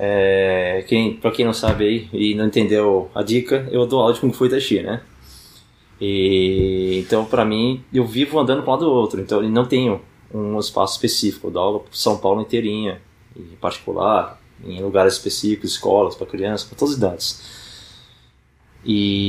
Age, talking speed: 20-39, 175 wpm